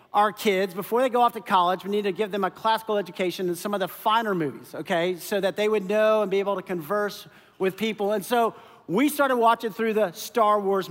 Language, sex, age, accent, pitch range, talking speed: English, male, 40-59, American, 200-280 Hz, 230 wpm